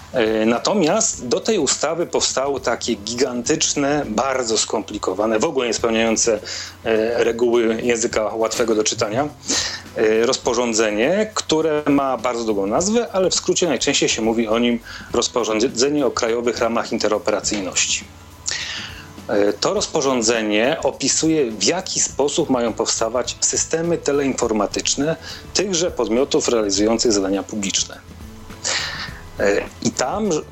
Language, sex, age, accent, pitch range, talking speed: Polish, male, 40-59, native, 105-145 Hz, 105 wpm